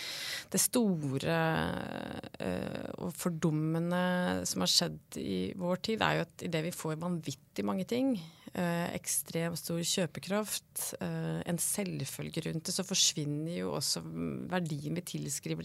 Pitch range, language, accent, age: 150-180 Hz, English, Swedish, 30-49